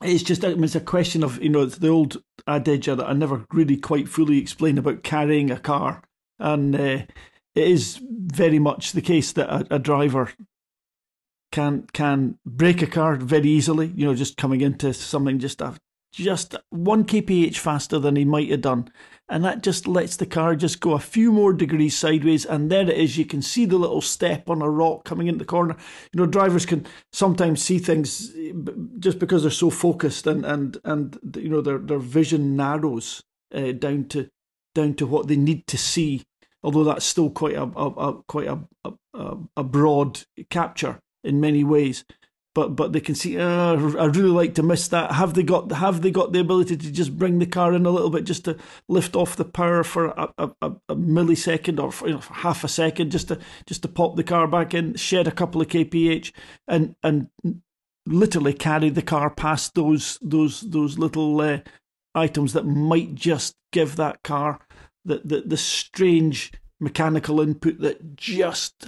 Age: 50-69